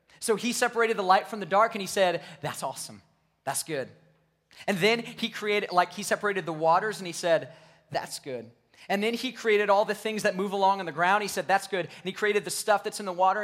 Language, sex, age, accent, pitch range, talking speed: English, male, 30-49, American, 160-210 Hz, 245 wpm